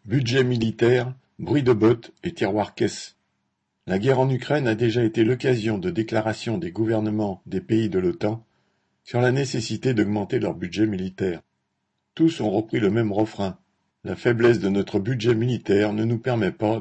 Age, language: 50-69, French